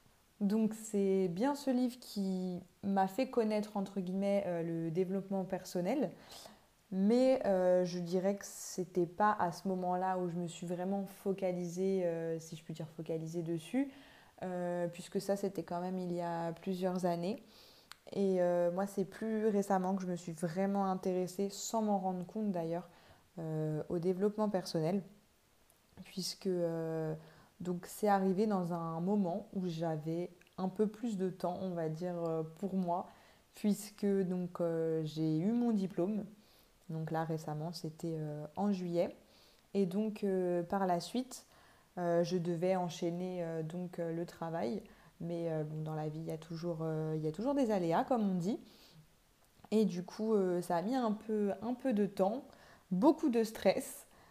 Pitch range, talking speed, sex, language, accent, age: 170-200 Hz, 170 wpm, female, French, French, 20-39